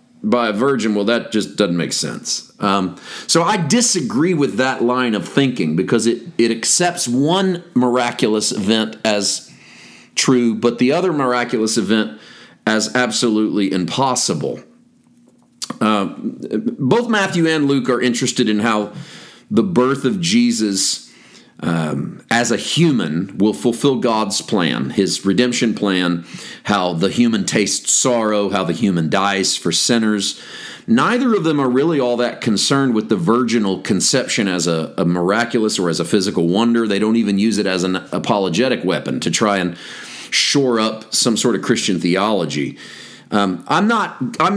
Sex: male